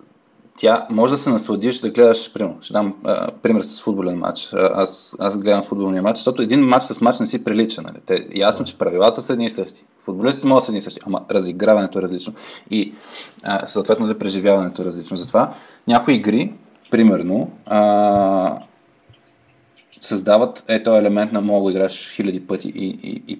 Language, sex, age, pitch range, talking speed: Bulgarian, male, 20-39, 95-110 Hz, 180 wpm